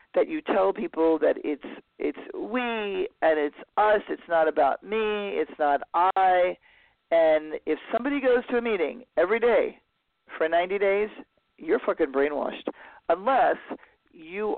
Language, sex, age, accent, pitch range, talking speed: English, male, 40-59, American, 140-210 Hz, 145 wpm